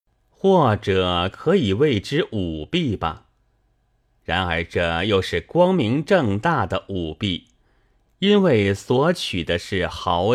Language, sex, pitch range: Chinese, male, 90-125 Hz